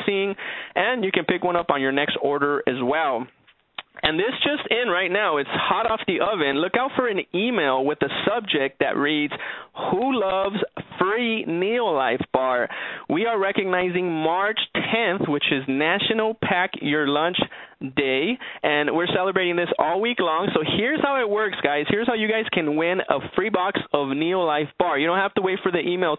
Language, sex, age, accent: English, male, 20-39, American